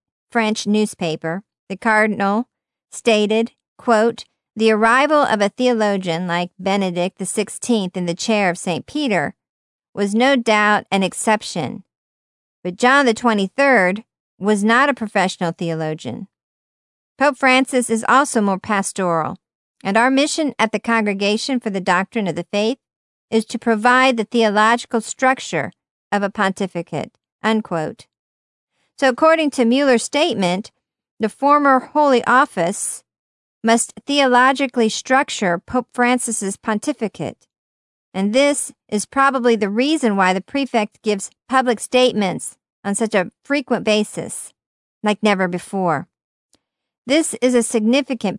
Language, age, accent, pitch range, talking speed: English, 50-69, American, 195-245 Hz, 125 wpm